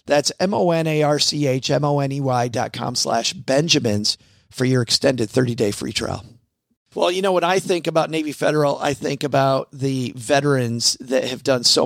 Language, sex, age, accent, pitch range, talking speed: English, male, 50-69, American, 130-160 Hz, 215 wpm